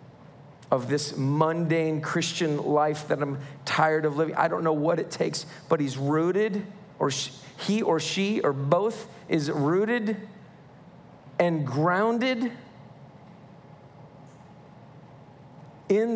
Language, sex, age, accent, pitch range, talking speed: English, male, 40-59, American, 150-215 Hz, 110 wpm